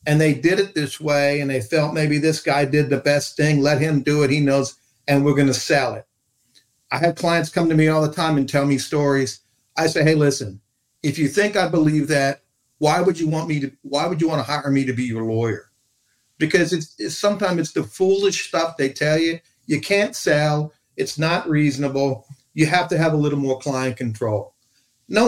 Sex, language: male, English